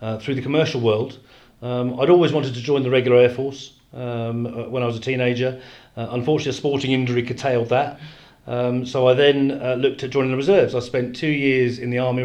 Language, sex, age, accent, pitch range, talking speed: English, male, 40-59, British, 125-145 Hz, 220 wpm